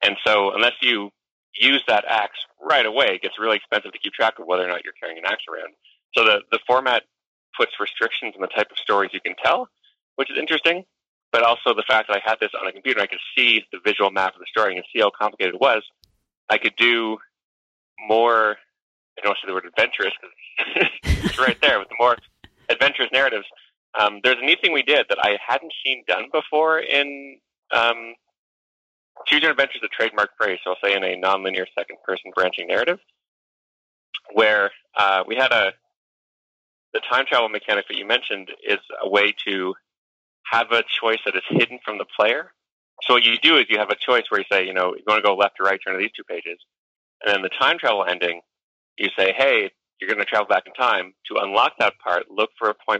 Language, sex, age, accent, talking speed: English, male, 30-49, American, 220 wpm